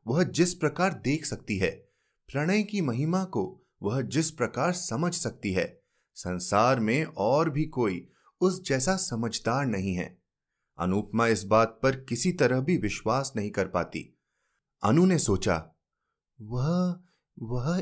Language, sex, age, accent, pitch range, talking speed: Hindi, male, 30-49, native, 115-175 Hz, 140 wpm